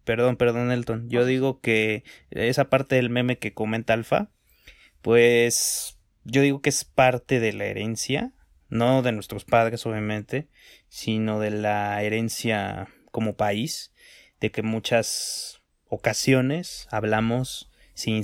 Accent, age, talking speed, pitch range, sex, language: Mexican, 30-49, 130 wpm, 105-130 Hz, male, Spanish